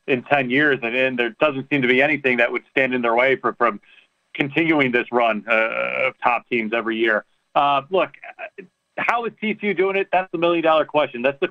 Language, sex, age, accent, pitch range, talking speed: English, male, 40-59, American, 125-150 Hz, 215 wpm